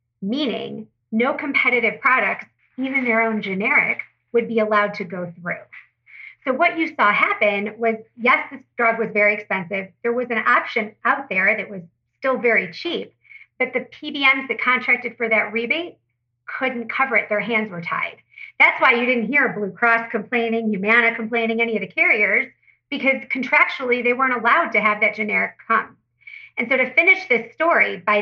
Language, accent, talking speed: English, American, 175 wpm